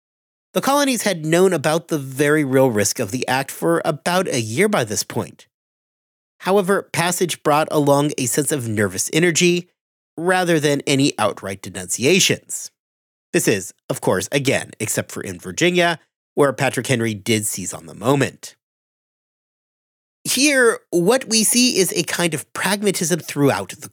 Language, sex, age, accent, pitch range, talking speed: English, male, 40-59, American, 125-195 Hz, 155 wpm